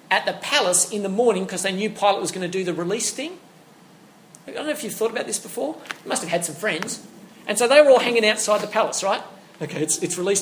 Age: 30-49